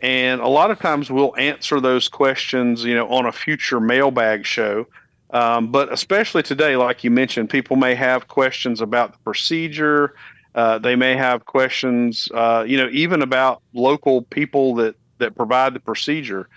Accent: American